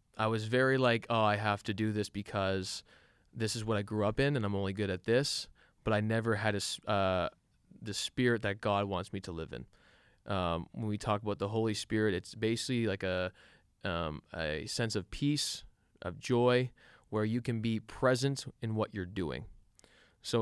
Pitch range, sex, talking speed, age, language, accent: 95-115 Hz, male, 200 wpm, 20-39, English, American